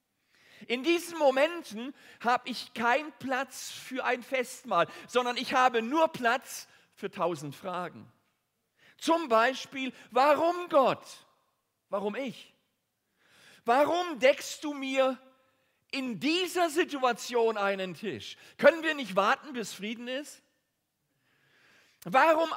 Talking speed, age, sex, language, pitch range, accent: 110 wpm, 40-59, male, German, 220-290 Hz, German